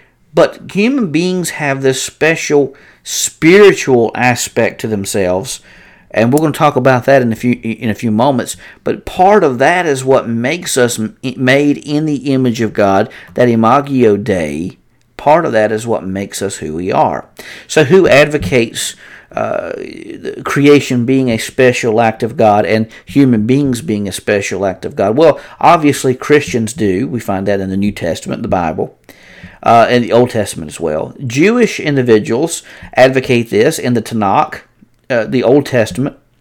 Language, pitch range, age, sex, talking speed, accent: English, 115-140 Hz, 50-69, male, 170 wpm, American